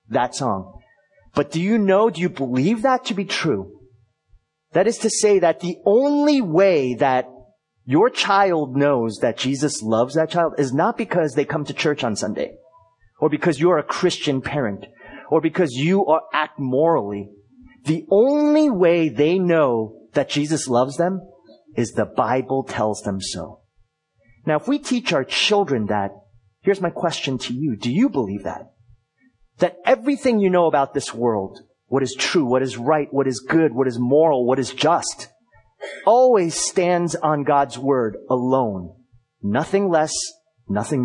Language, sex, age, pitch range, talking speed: English, male, 30-49, 130-190 Hz, 165 wpm